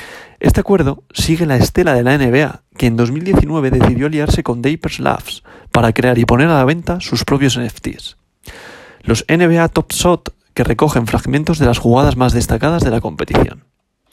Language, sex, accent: Spanish, male, Spanish